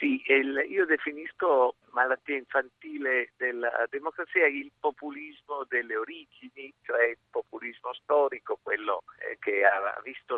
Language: Italian